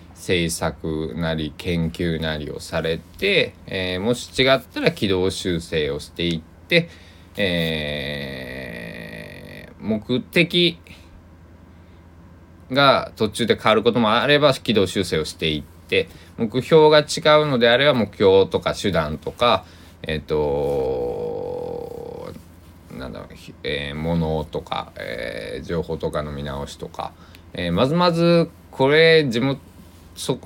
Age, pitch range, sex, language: 20-39, 85-135 Hz, male, Japanese